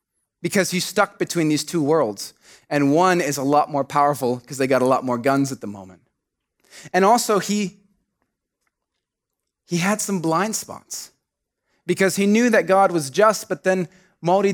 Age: 30-49